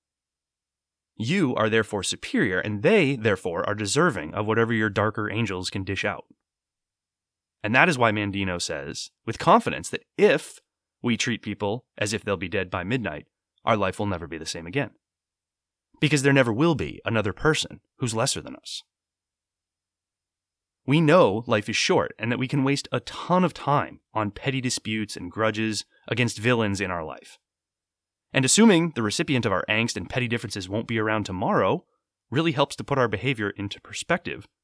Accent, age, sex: American, 30-49, male